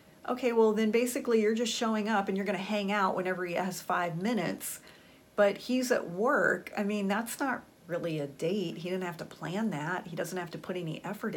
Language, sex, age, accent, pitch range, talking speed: English, female, 40-59, American, 200-255 Hz, 225 wpm